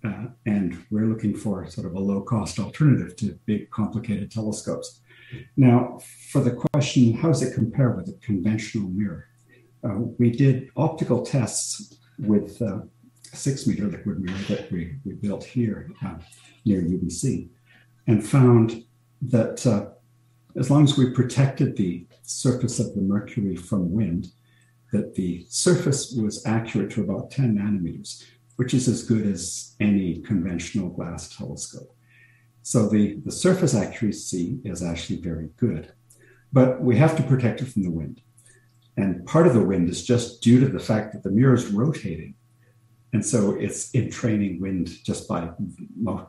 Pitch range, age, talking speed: 100-125 Hz, 60-79, 160 wpm